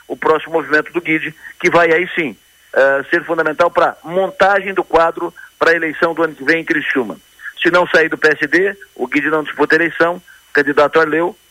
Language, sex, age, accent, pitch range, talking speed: Portuguese, male, 50-69, Brazilian, 150-190 Hz, 210 wpm